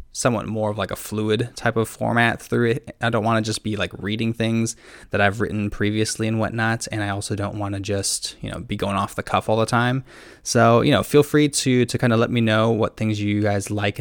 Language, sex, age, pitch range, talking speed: English, male, 20-39, 100-115 Hz, 255 wpm